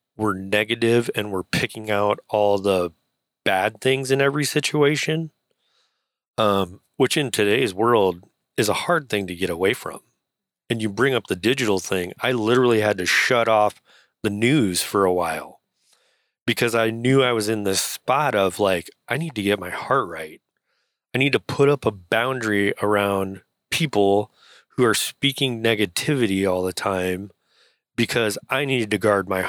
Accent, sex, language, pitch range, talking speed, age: American, male, English, 100-125 Hz, 170 wpm, 30-49